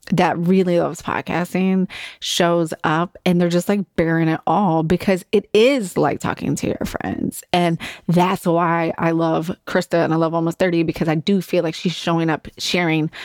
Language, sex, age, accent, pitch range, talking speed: English, female, 20-39, American, 165-190 Hz, 185 wpm